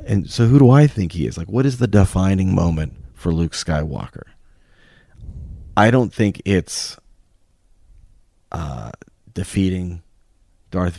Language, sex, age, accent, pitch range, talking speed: English, male, 30-49, American, 85-95 Hz, 130 wpm